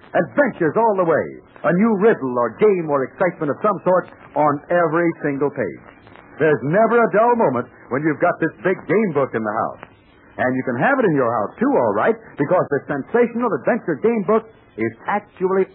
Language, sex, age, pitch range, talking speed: English, male, 60-79, 160-230 Hz, 200 wpm